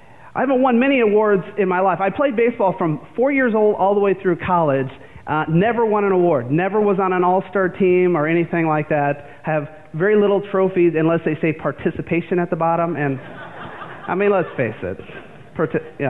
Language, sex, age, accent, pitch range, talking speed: English, male, 30-49, American, 135-185 Hz, 205 wpm